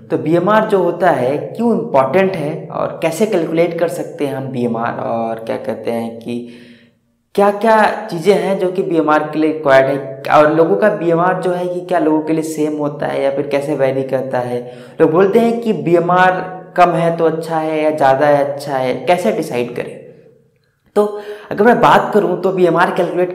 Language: Hindi